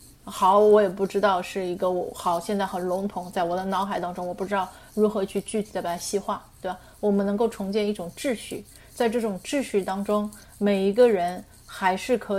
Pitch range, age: 185-215 Hz, 30-49